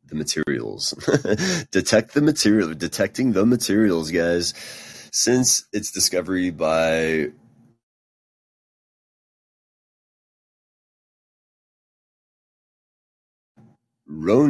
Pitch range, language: 75-90 Hz, English